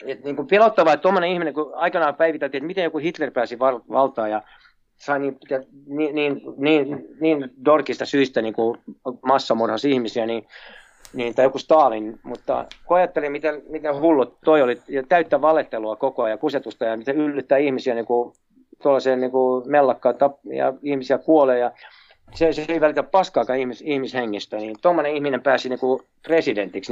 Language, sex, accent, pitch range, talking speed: Finnish, male, native, 130-160 Hz, 150 wpm